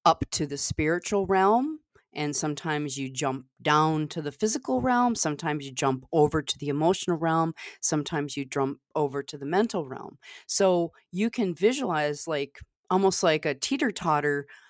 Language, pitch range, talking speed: English, 150-200 Hz, 160 wpm